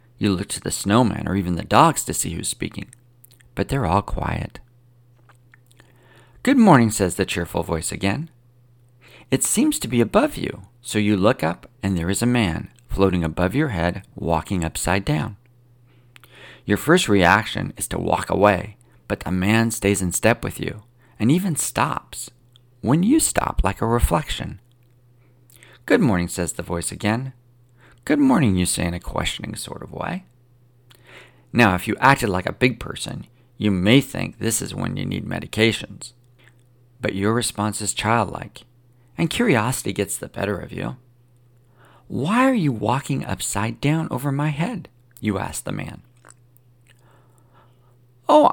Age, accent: 40-59, American